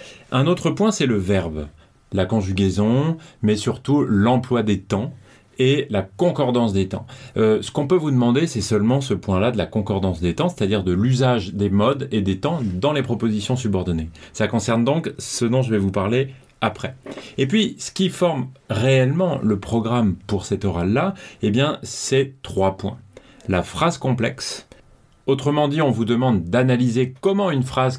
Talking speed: 180 wpm